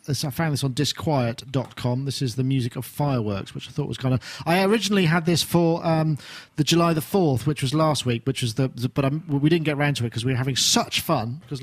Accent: British